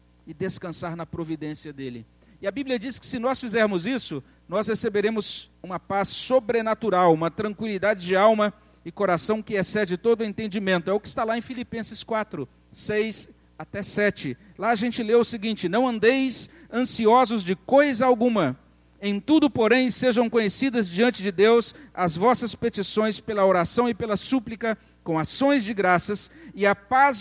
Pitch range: 185-245 Hz